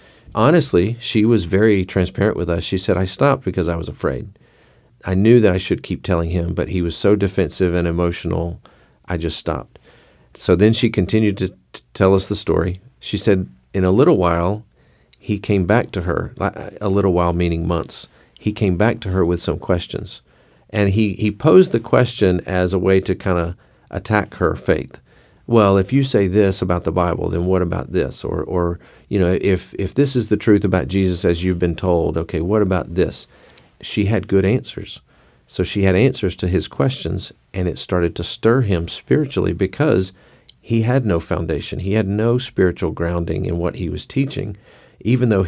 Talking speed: 195 wpm